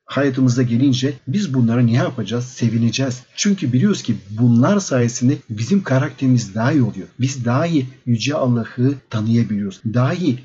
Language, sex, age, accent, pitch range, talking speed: Turkish, male, 50-69, native, 120-140 Hz, 130 wpm